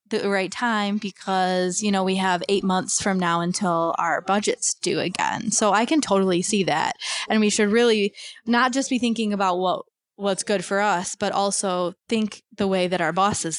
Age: 20-39